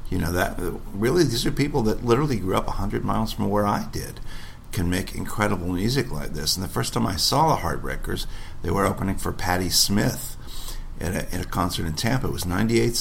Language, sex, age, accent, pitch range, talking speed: English, male, 50-69, American, 85-110 Hz, 215 wpm